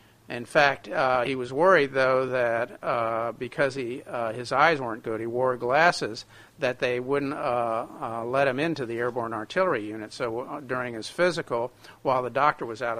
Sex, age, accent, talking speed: male, 50-69, American, 185 wpm